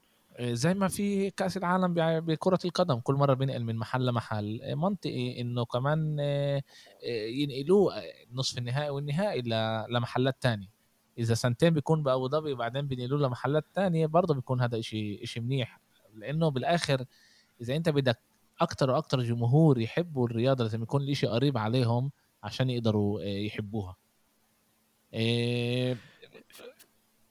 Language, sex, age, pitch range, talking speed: Arabic, male, 20-39, 110-145 Hz, 125 wpm